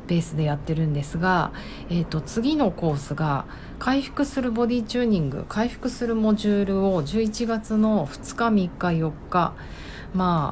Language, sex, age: Japanese, female, 40-59